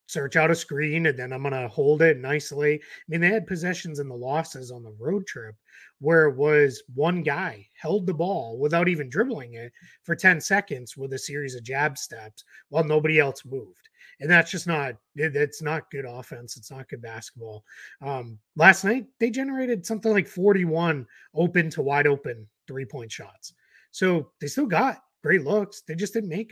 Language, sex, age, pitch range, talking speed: English, male, 30-49, 135-185 Hz, 195 wpm